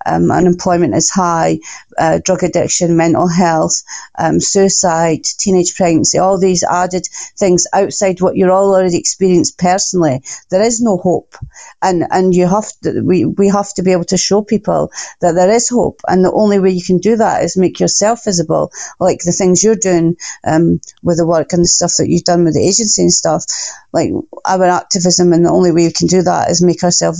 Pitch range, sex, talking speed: 170-190 Hz, female, 205 wpm